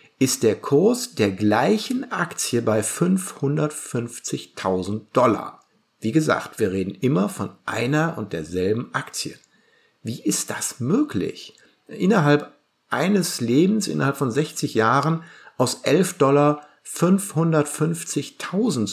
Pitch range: 120-165 Hz